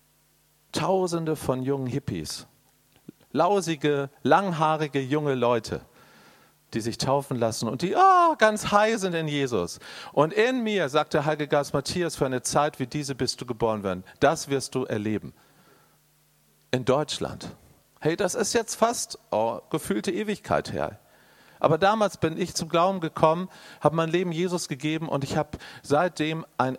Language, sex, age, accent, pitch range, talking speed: German, male, 40-59, German, 125-175 Hz, 155 wpm